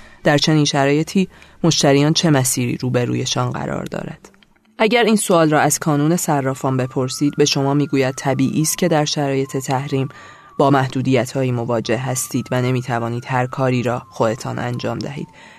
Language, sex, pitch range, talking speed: Persian, female, 130-150 Hz, 155 wpm